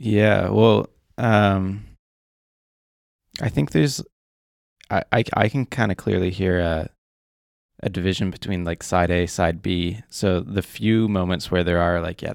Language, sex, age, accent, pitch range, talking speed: English, male, 20-39, American, 90-100 Hz, 155 wpm